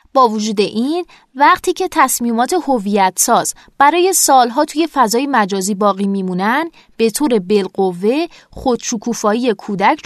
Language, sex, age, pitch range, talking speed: Persian, female, 20-39, 205-280 Hz, 120 wpm